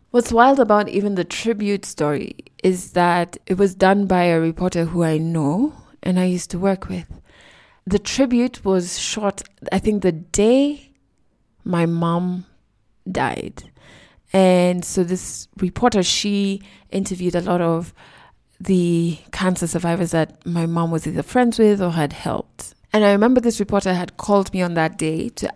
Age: 20-39